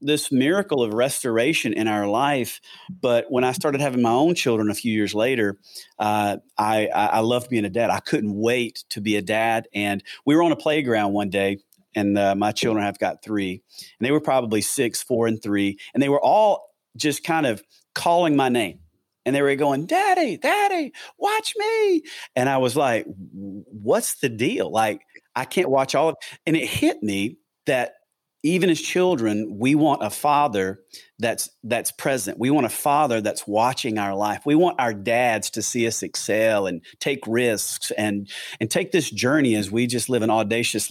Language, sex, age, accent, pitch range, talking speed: English, male, 40-59, American, 105-145 Hz, 195 wpm